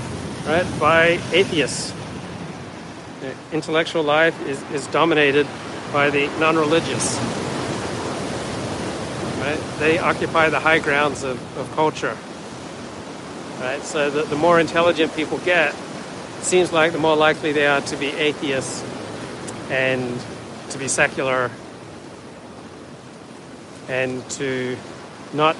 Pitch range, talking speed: 130-155 Hz, 110 wpm